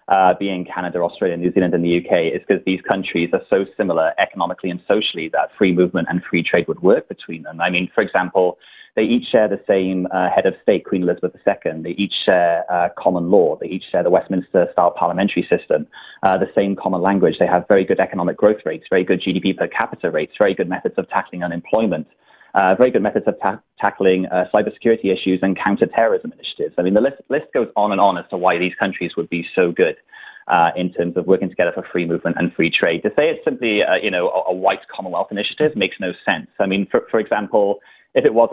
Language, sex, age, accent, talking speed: English, male, 30-49, British, 230 wpm